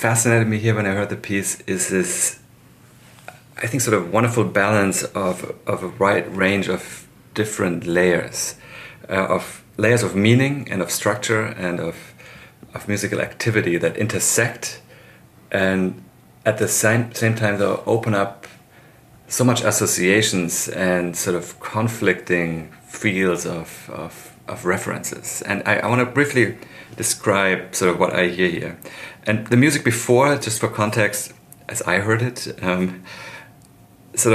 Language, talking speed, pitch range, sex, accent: English, 145 wpm, 90-115 Hz, male, German